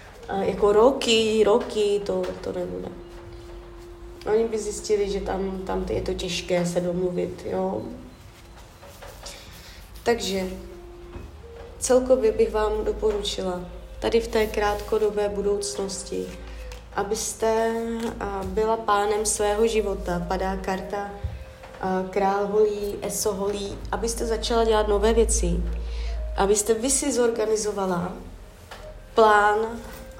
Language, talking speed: Czech, 100 wpm